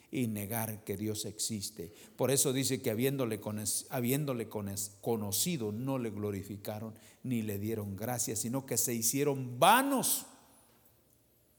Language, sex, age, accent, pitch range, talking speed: English, male, 50-69, Mexican, 115-165 Hz, 120 wpm